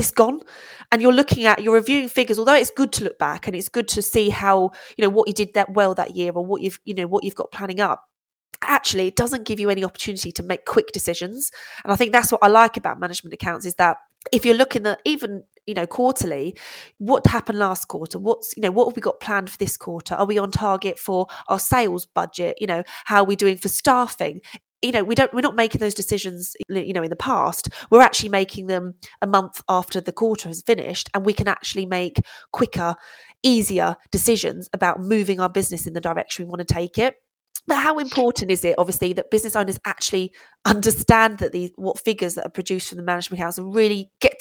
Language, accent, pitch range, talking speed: English, British, 180-230 Hz, 230 wpm